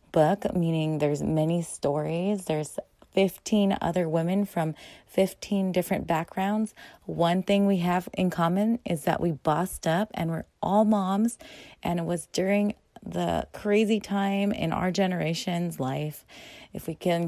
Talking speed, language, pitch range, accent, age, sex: 140 wpm, English, 155-200 Hz, American, 30-49, female